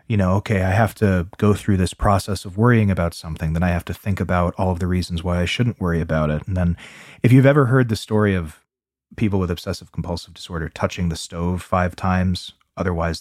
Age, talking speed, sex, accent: 30-49, 225 wpm, male, American